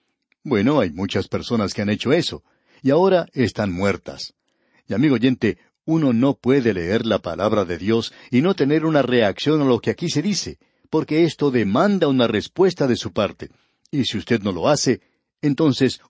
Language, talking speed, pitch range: Spanish, 185 wpm, 110-145 Hz